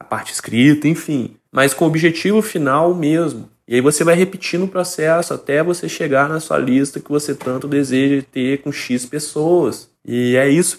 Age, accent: 20-39, Brazilian